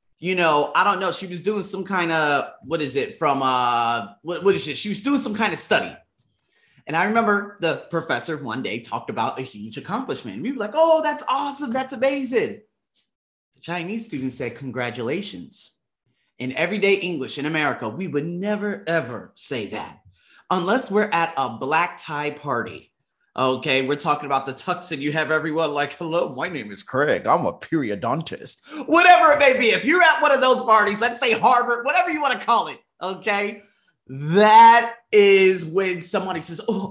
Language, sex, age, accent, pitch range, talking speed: English, male, 30-49, American, 150-235 Hz, 190 wpm